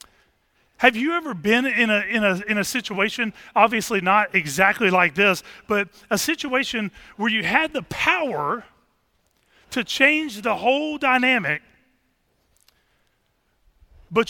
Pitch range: 205-270 Hz